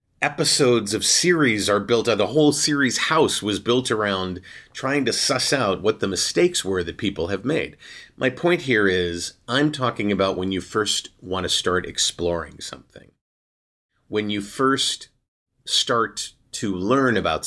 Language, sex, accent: English, male, American